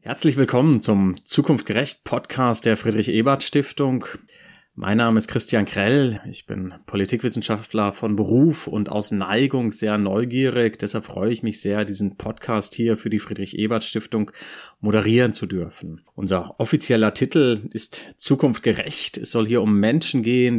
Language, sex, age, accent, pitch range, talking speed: German, male, 30-49, German, 105-125 Hz, 150 wpm